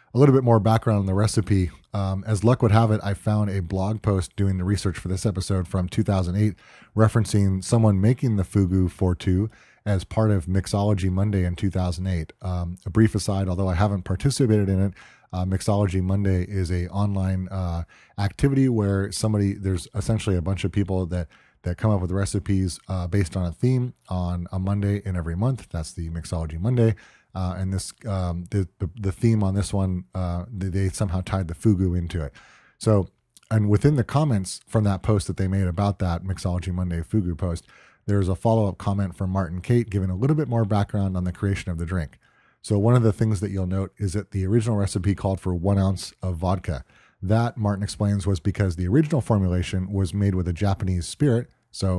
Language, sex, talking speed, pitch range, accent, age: English, male, 205 wpm, 90-105 Hz, American, 30-49